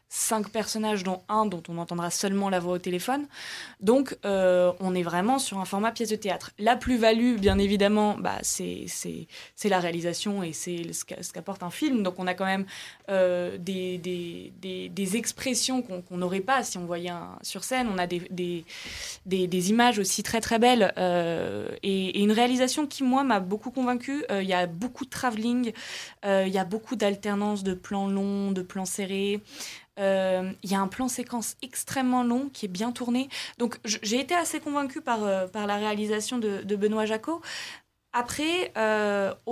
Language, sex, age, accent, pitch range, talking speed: French, female, 20-39, French, 190-240 Hz, 195 wpm